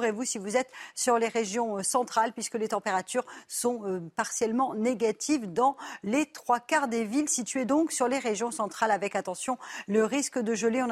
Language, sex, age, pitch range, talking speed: French, female, 40-59, 220-265 Hz, 185 wpm